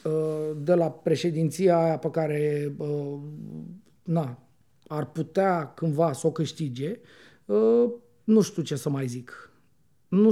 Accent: native